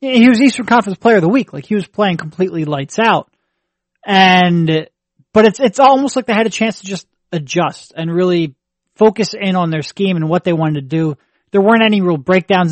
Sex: male